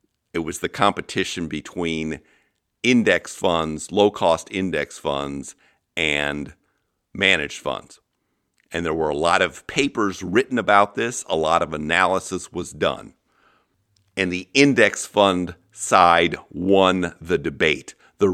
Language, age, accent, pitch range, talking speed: English, 50-69, American, 80-95 Hz, 125 wpm